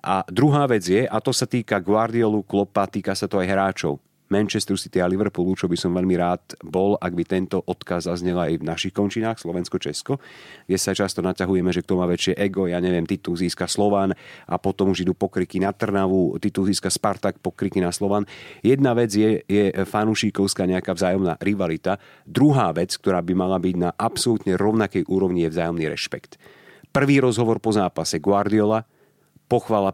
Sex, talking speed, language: male, 180 wpm, Slovak